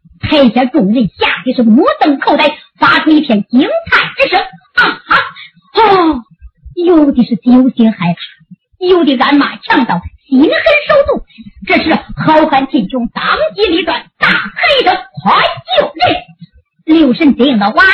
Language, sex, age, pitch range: Chinese, male, 50-69, 255-360 Hz